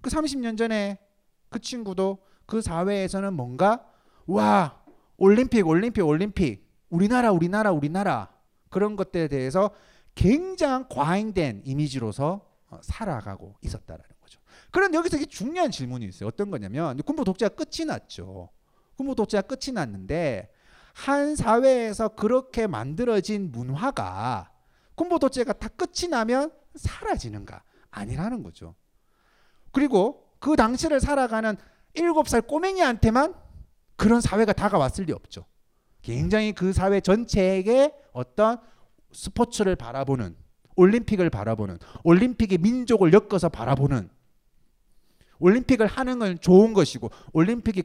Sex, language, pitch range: male, Korean, 150-235 Hz